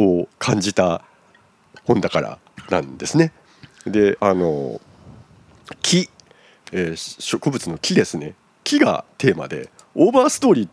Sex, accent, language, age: male, native, Japanese, 50-69